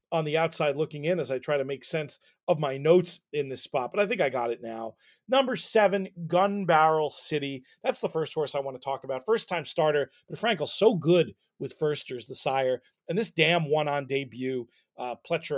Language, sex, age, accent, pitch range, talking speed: English, male, 40-59, American, 135-165 Hz, 210 wpm